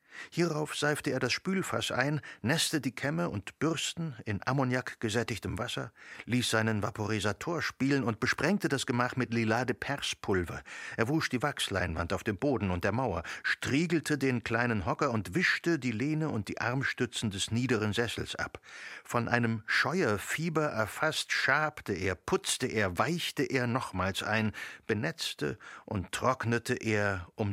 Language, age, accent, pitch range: German, 60-79, German, 105-145 Hz